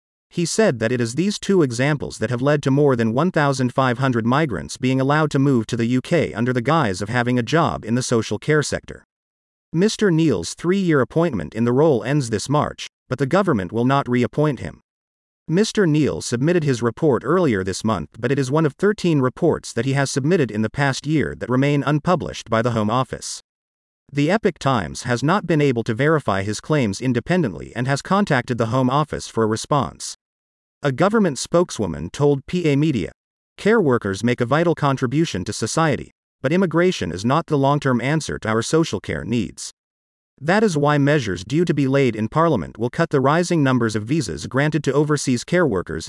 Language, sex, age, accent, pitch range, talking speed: English, male, 40-59, American, 120-160 Hz, 195 wpm